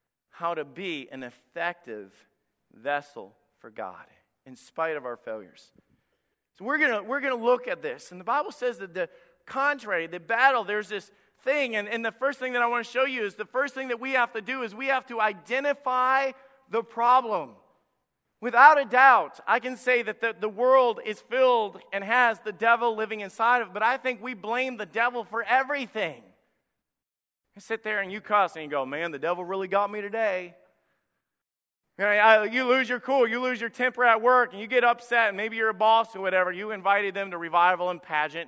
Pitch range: 190-255 Hz